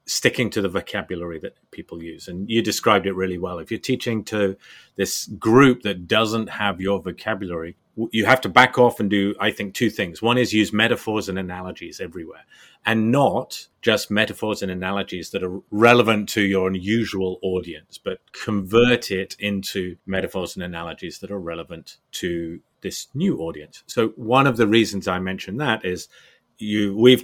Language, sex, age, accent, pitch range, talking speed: English, male, 30-49, British, 95-115 Hz, 175 wpm